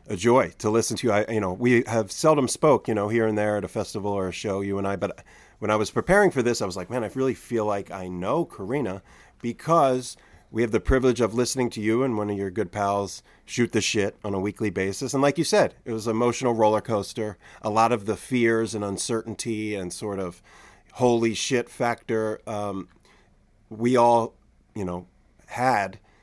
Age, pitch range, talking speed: 30-49, 95-115 Hz, 220 wpm